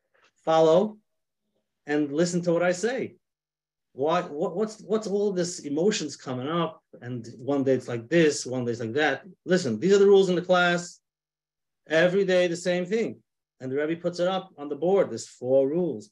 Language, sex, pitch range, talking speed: English, male, 130-170 Hz, 195 wpm